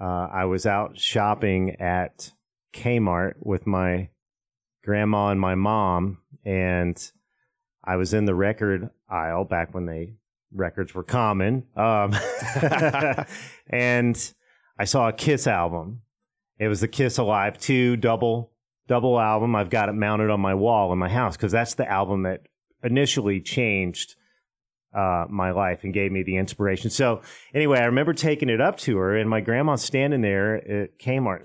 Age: 30-49